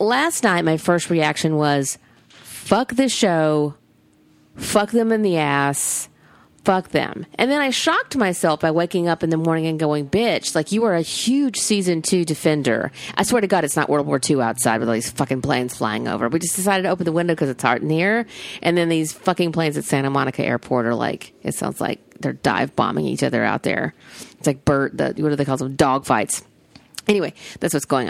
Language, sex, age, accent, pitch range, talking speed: English, female, 40-59, American, 150-205 Hz, 220 wpm